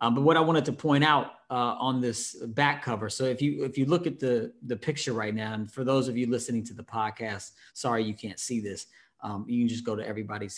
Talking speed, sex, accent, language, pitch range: 260 wpm, male, American, English, 110-130 Hz